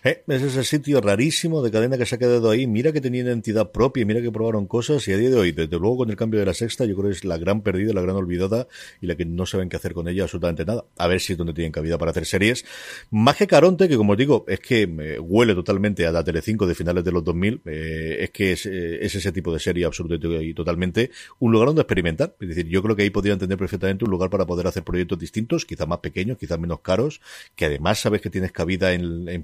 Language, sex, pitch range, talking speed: Spanish, male, 90-110 Hz, 265 wpm